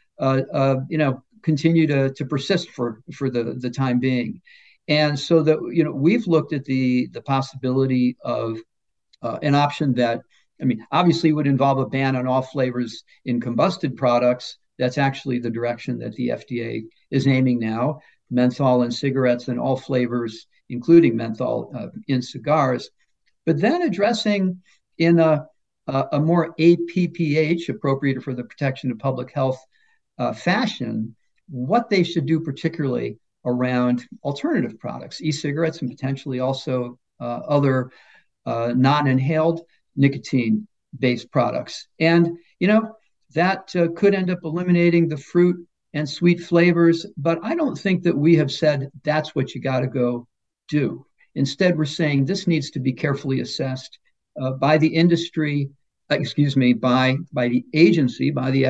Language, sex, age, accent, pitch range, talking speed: English, male, 50-69, American, 125-165 Hz, 155 wpm